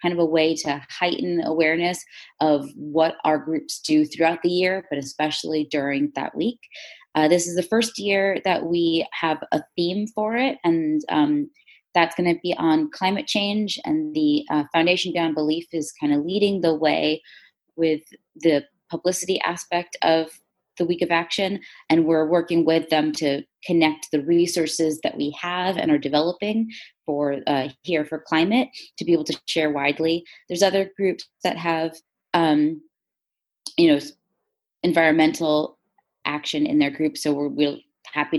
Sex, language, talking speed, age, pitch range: female, English, 165 wpm, 20-39, 150-200 Hz